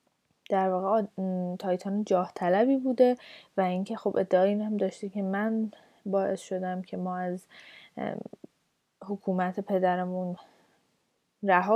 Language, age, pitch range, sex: Persian, 10-29, 195-245 Hz, female